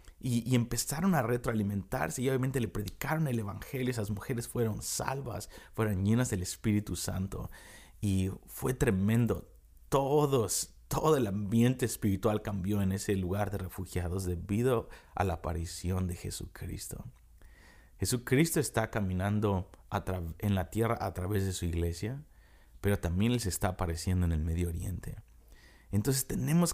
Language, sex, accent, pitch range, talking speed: Spanish, male, Mexican, 90-115 Hz, 145 wpm